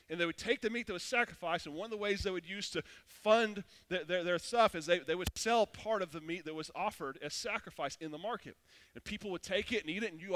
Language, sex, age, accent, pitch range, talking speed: English, male, 30-49, American, 180-225 Hz, 285 wpm